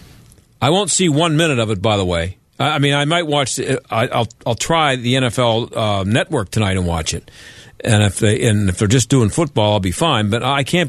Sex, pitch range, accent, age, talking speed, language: male, 120-165 Hz, American, 50-69, 235 wpm, English